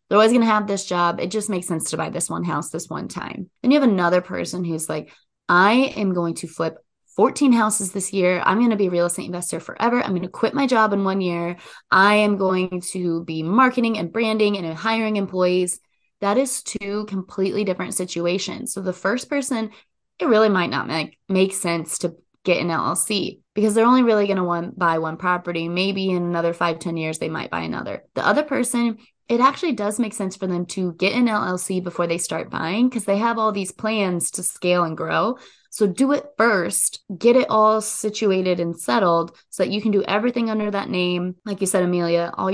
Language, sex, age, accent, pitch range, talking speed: English, female, 20-39, American, 175-220 Hz, 220 wpm